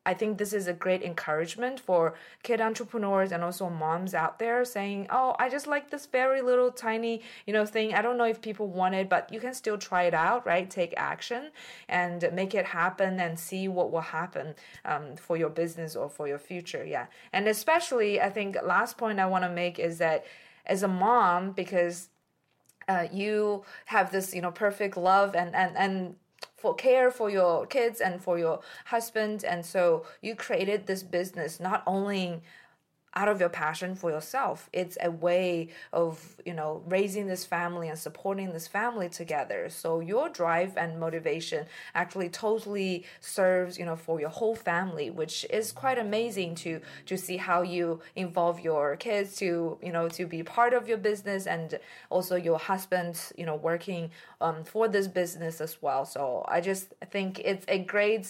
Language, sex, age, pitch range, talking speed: English, female, 20-39, 170-210 Hz, 185 wpm